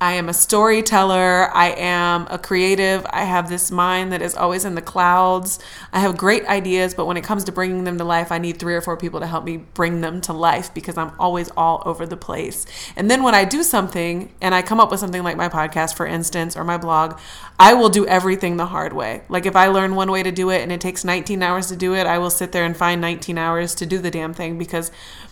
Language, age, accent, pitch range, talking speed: English, 20-39, American, 170-190 Hz, 260 wpm